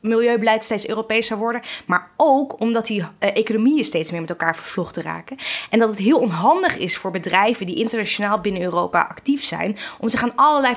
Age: 20-39